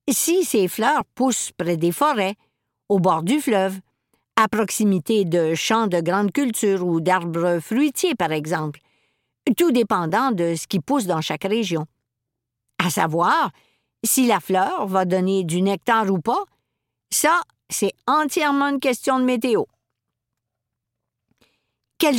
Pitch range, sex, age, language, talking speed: 185-265 Hz, female, 50-69, French, 140 wpm